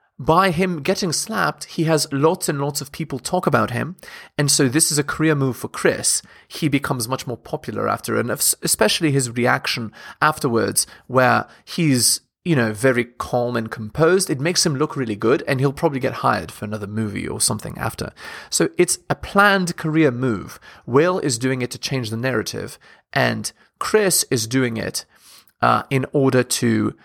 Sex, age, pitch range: male, 30-49, 125-165 Hz